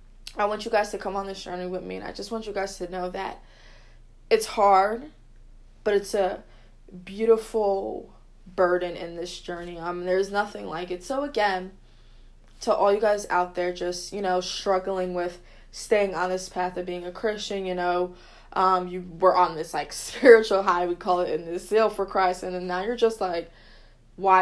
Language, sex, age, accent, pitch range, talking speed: English, female, 20-39, American, 175-210 Hz, 205 wpm